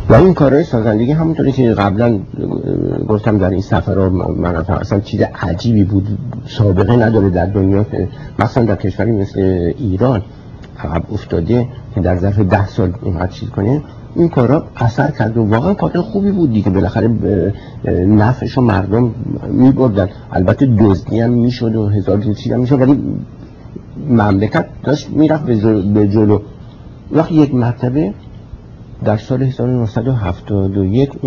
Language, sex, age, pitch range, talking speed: Persian, male, 50-69, 100-130 Hz, 130 wpm